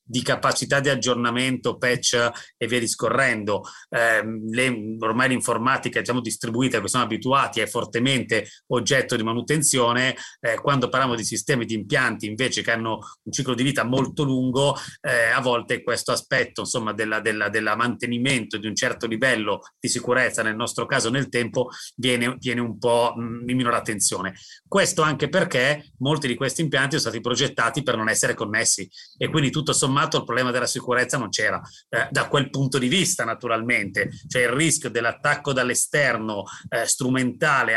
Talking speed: 165 wpm